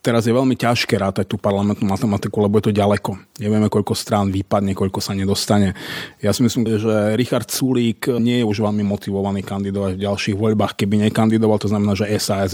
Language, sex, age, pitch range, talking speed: Slovak, male, 30-49, 105-125 Hz, 190 wpm